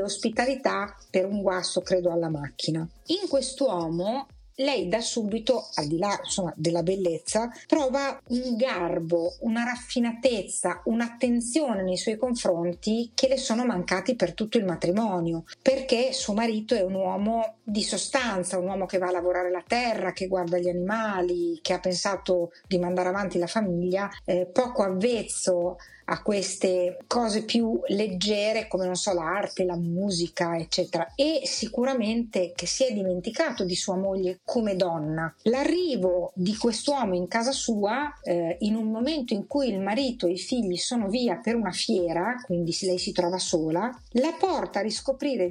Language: Italian